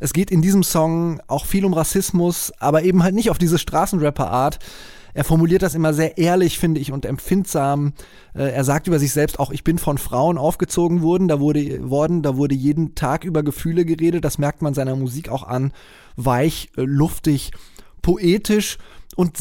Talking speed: 185 wpm